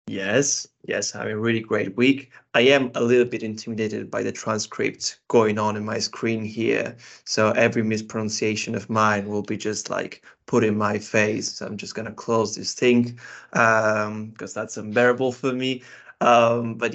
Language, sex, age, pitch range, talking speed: English, male, 20-39, 110-125 Hz, 180 wpm